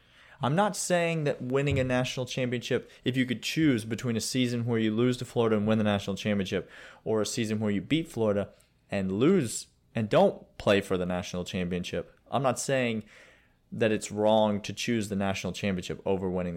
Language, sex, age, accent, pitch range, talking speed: English, male, 30-49, American, 95-135 Hz, 195 wpm